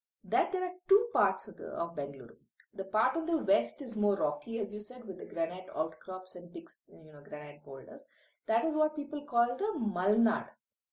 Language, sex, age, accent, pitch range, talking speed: English, female, 30-49, Indian, 200-280 Hz, 205 wpm